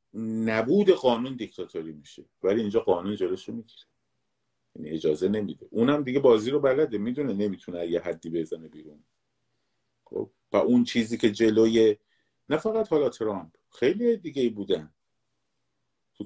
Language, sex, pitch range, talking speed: Persian, male, 95-130 Hz, 135 wpm